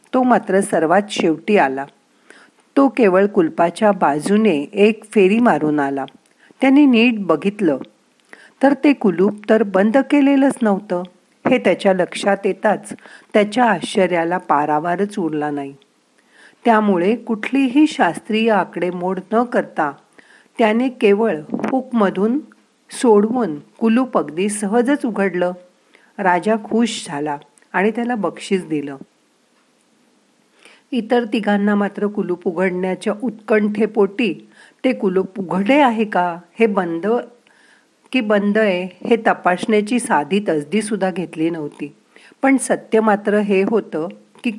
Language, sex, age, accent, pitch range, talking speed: Marathi, female, 50-69, native, 180-235 Hz, 110 wpm